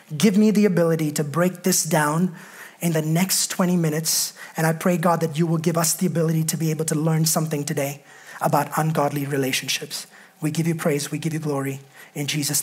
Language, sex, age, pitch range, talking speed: English, male, 30-49, 170-215 Hz, 210 wpm